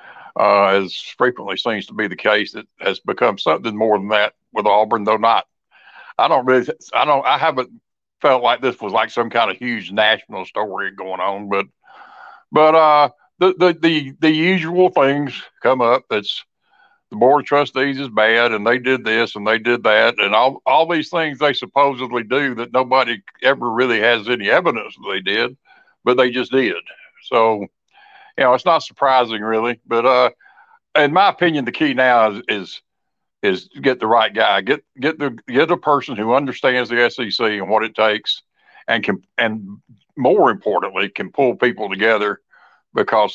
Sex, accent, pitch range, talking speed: male, American, 110-140 Hz, 185 wpm